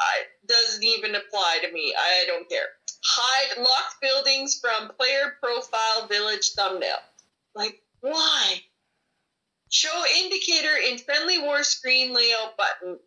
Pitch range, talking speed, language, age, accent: 200-270 Hz, 125 wpm, English, 30-49, American